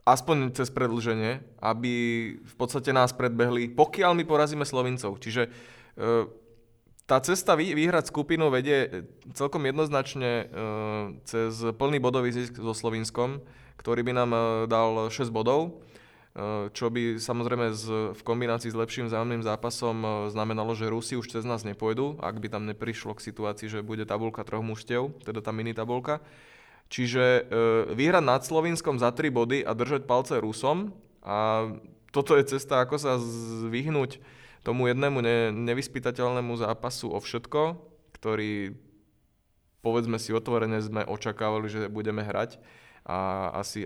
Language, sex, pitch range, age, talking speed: Slovak, male, 110-130 Hz, 20-39, 135 wpm